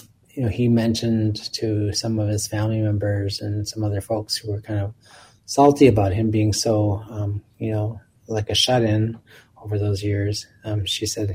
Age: 20-39